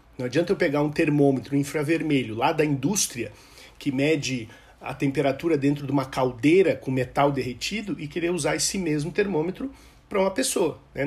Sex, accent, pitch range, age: male, Brazilian, 130-165 Hz, 40-59